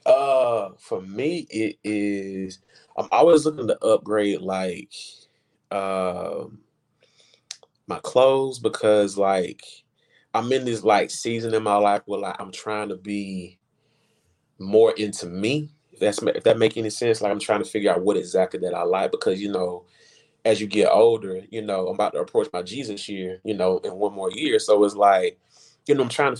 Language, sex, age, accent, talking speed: English, male, 20-39, American, 180 wpm